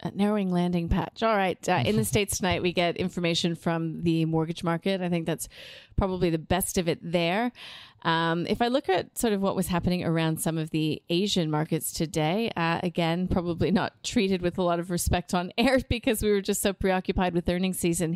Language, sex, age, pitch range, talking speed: English, female, 30-49, 165-200 Hz, 210 wpm